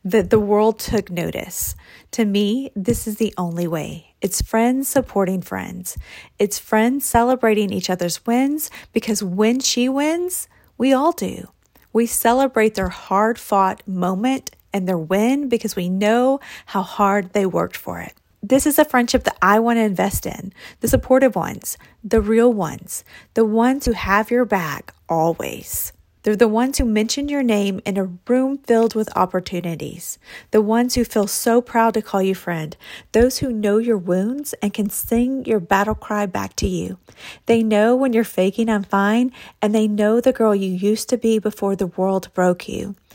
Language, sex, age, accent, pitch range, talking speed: English, female, 30-49, American, 195-240 Hz, 175 wpm